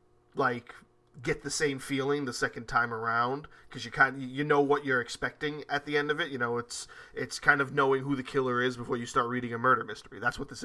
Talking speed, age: 240 wpm, 20-39